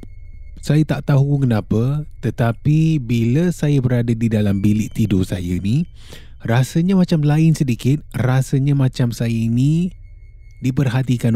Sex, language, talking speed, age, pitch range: male, Malay, 120 wpm, 20-39, 100-135 Hz